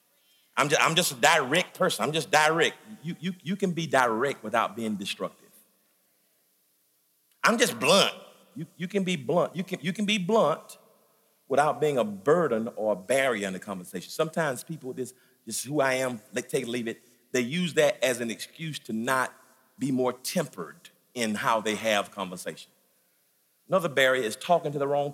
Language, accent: English, American